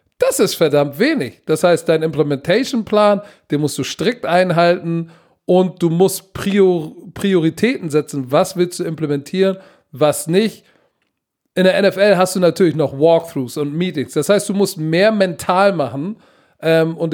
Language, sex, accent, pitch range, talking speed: German, male, German, 155-190 Hz, 145 wpm